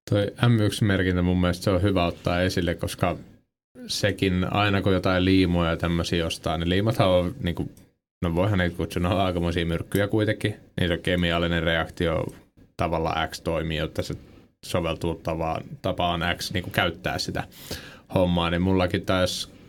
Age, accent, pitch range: 30-49, native, 85-95 Hz